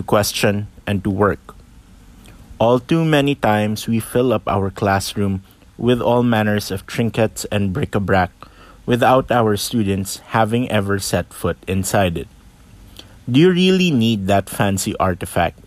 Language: English